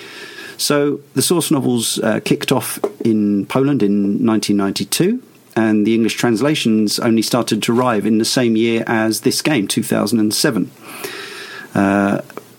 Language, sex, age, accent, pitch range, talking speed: English, male, 40-59, British, 105-130 Hz, 130 wpm